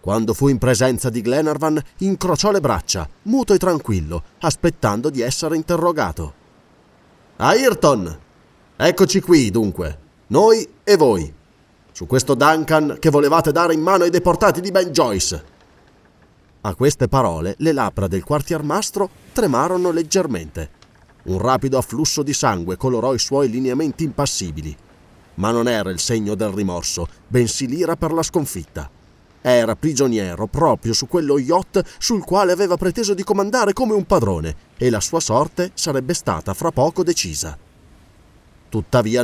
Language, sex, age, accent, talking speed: Italian, male, 30-49, native, 140 wpm